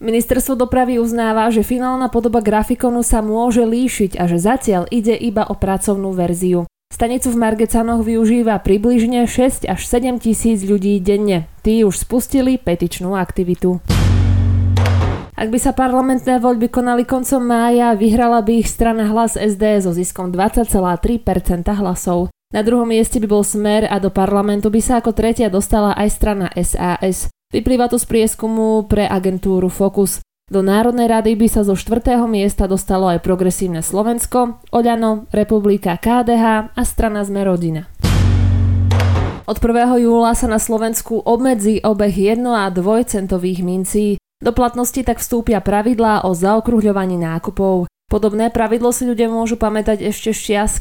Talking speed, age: 145 wpm, 20-39